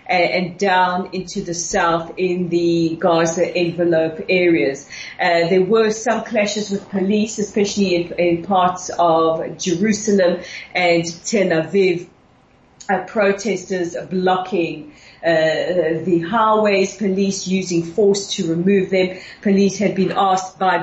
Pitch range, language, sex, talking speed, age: 170-190 Hz, English, female, 120 wpm, 40-59